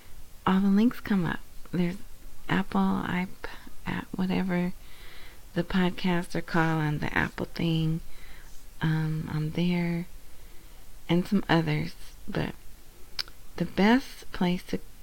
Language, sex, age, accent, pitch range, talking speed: English, female, 30-49, American, 165-200 Hz, 110 wpm